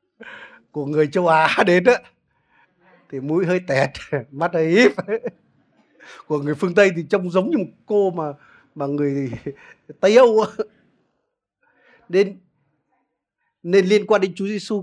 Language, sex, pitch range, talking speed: Vietnamese, male, 145-200 Hz, 145 wpm